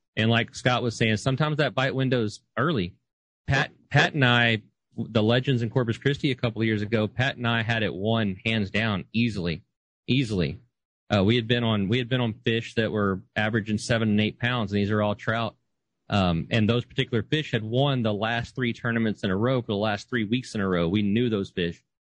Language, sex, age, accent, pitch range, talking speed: English, male, 40-59, American, 105-120 Hz, 225 wpm